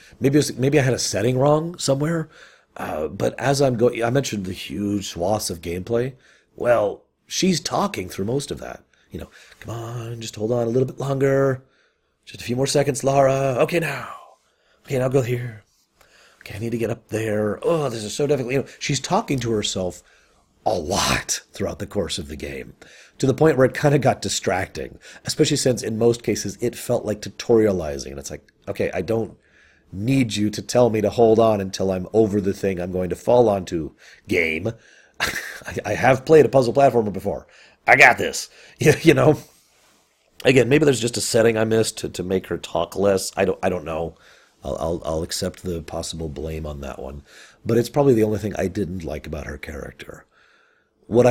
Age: 30-49